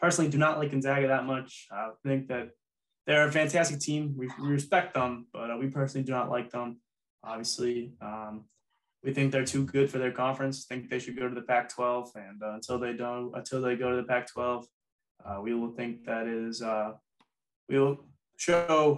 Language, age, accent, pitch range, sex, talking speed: English, 20-39, American, 120-135 Hz, male, 200 wpm